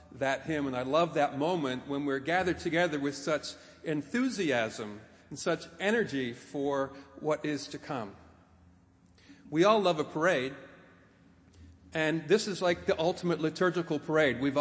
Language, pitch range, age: English, 125-170 Hz, 50-69